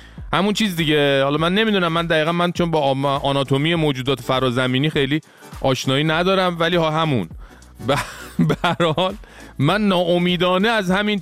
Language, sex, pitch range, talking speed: Persian, male, 125-185 Hz, 140 wpm